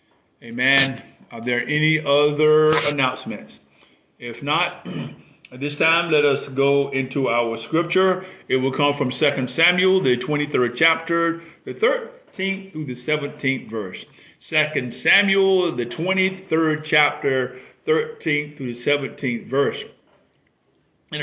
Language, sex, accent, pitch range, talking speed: English, male, American, 135-180 Hz, 120 wpm